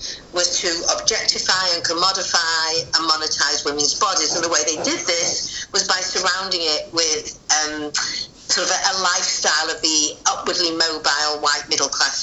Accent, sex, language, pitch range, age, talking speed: British, female, French, 170-205 Hz, 50-69, 155 wpm